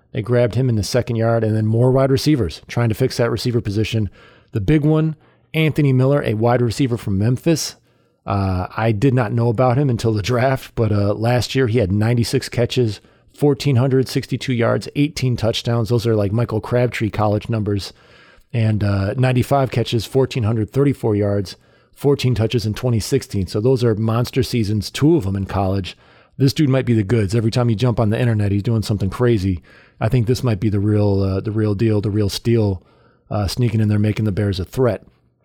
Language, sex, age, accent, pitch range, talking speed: English, male, 40-59, American, 105-125 Hz, 200 wpm